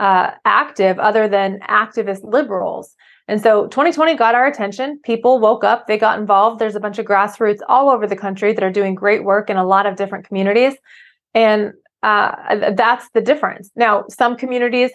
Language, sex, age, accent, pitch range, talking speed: English, female, 20-39, American, 200-240 Hz, 185 wpm